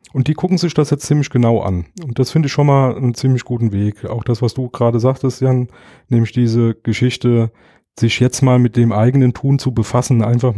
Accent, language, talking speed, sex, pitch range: German, German, 220 wpm, male, 120-145 Hz